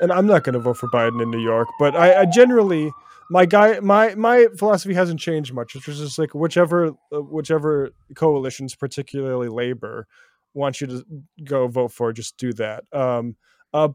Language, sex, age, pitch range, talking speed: English, male, 20-39, 130-170 Hz, 185 wpm